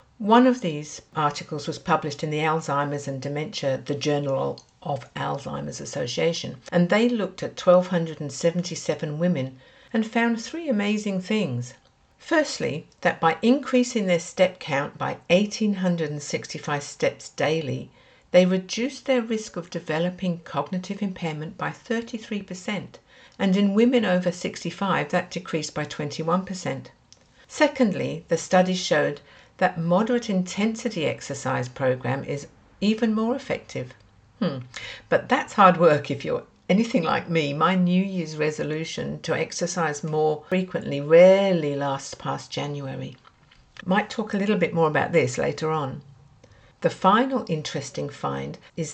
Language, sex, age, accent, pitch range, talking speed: English, female, 60-79, British, 150-205 Hz, 130 wpm